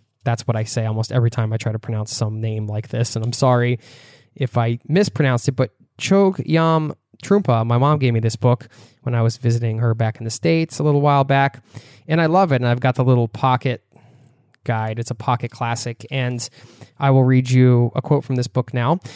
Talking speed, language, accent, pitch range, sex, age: 220 wpm, English, American, 120-140 Hz, male, 20-39